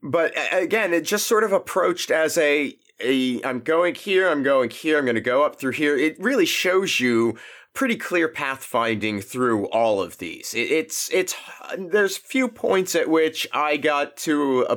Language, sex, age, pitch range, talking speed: English, male, 30-49, 105-140 Hz, 185 wpm